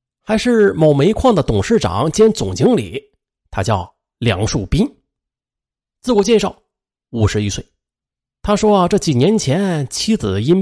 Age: 30-49